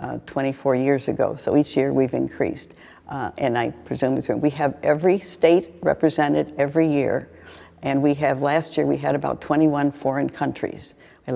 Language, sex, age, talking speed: English, female, 60-79, 170 wpm